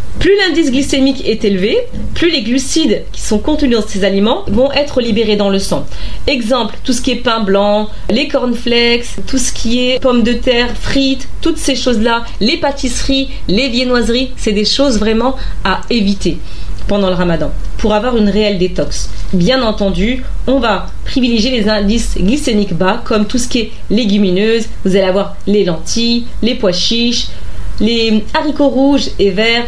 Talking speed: 175 wpm